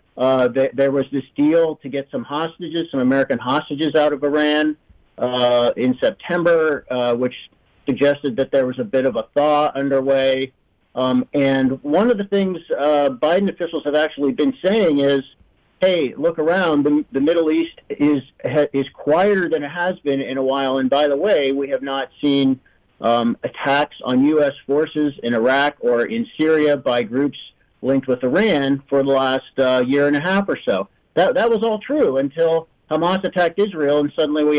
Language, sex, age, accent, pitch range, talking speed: English, male, 50-69, American, 130-155 Hz, 185 wpm